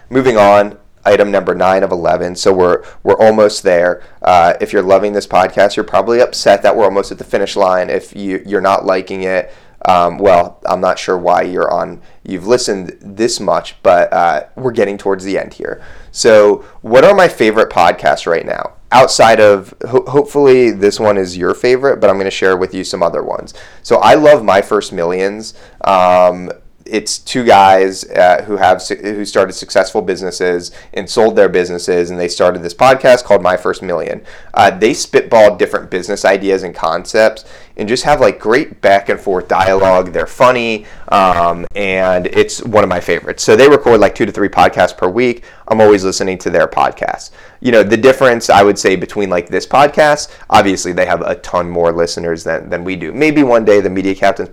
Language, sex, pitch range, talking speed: English, male, 90-110 Hz, 200 wpm